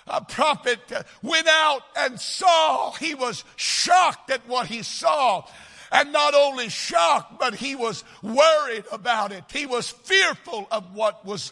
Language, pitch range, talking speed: English, 215-285 Hz, 150 wpm